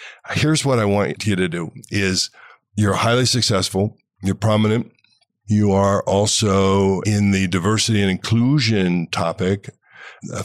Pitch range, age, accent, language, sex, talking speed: 95-115 Hz, 50-69, American, English, male, 130 wpm